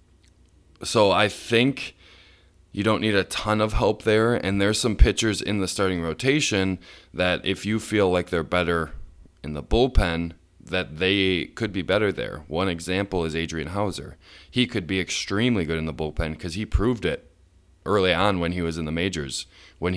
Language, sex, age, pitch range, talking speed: English, male, 20-39, 85-105 Hz, 185 wpm